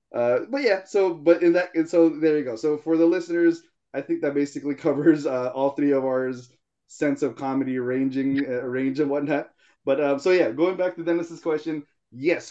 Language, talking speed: English, 205 wpm